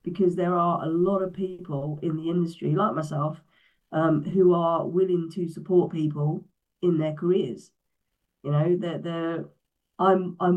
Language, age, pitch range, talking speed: English, 30-49, 150-170 Hz, 155 wpm